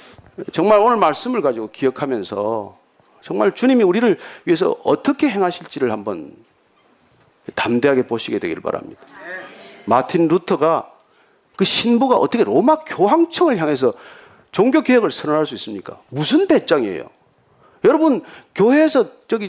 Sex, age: male, 40-59